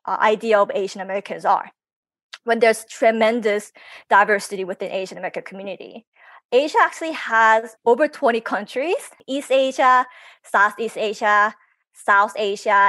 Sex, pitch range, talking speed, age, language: female, 210-265 Hz, 120 wpm, 20-39, English